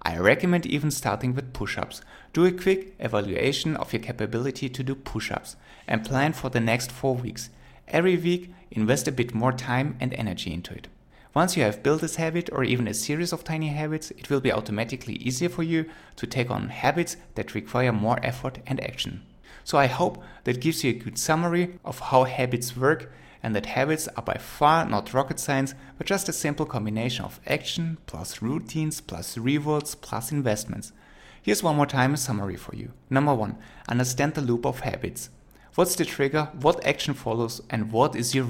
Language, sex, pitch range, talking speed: English, male, 115-150 Hz, 195 wpm